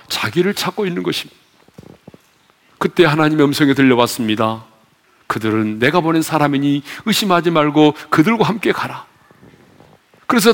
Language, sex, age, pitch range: Korean, male, 40-59, 140-200 Hz